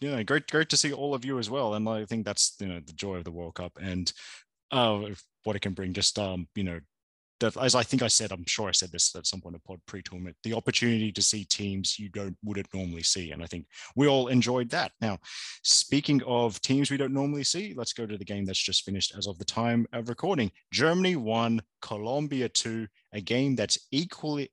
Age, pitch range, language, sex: 20-39, 95-115 Hz, English, male